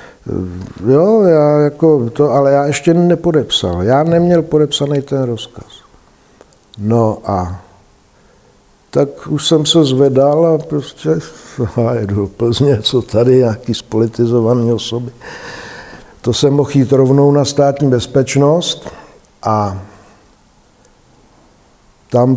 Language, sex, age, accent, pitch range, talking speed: Czech, male, 60-79, native, 115-150 Hz, 110 wpm